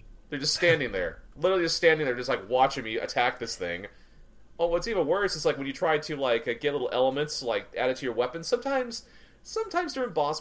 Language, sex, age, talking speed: English, male, 30-49, 220 wpm